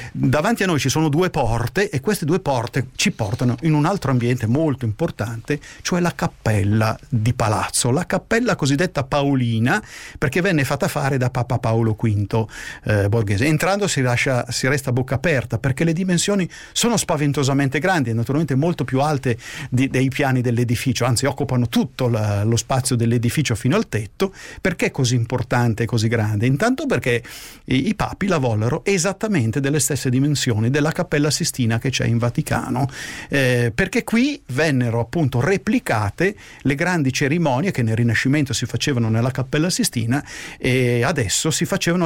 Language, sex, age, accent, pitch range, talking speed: Italian, male, 50-69, native, 120-165 Hz, 165 wpm